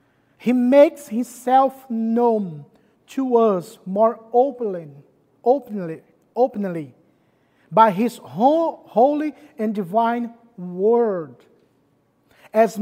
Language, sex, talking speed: English, male, 80 wpm